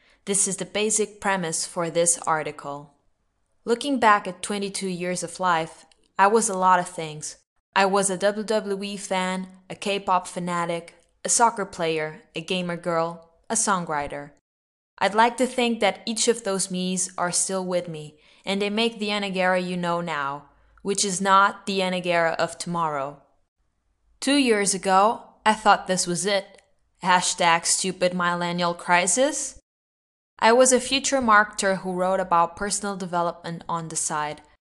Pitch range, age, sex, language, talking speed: 170-200 Hz, 10-29, female, English, 155 wpm